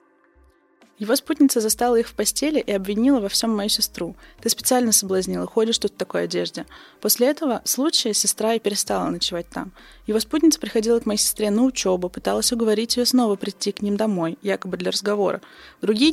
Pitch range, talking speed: 190-230 Hz, 180 wpm